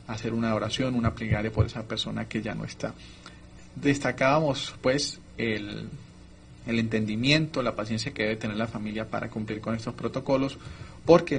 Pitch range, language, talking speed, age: 115-140 Hz, Spanish, 160 wpm, 30-49